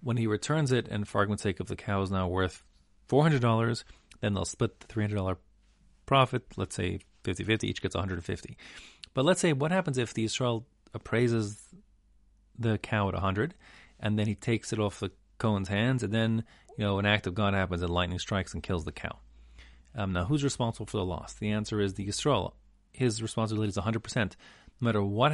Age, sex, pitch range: 40-59, male, 100-125 Hz